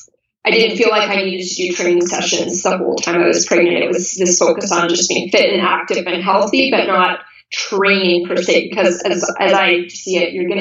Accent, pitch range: American, 175-225 Hz